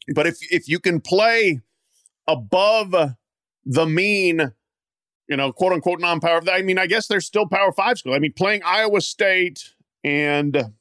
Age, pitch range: 40-59, 135-180 Hz